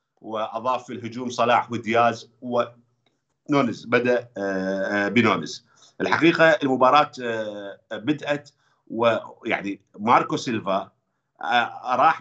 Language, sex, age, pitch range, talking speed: Arabic, male, 50-69, 105-120 Hz, 75 wpm